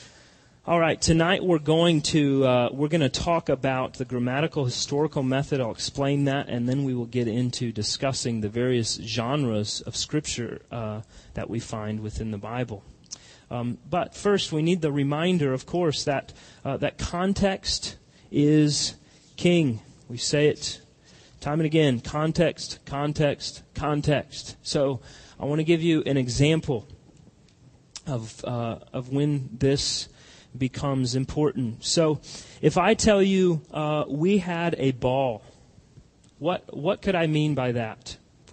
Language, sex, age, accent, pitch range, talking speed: English, male, 30-49, American, 125-165 Hz, 145 wpm